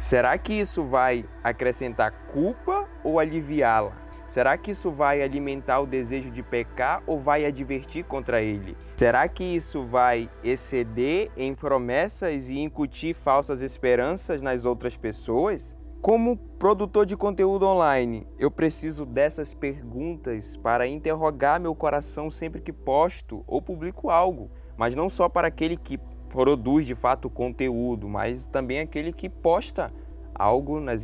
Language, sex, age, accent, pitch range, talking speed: Portuguese, male, 20-39, Brazilian, 120-160 Hz, 140 wpm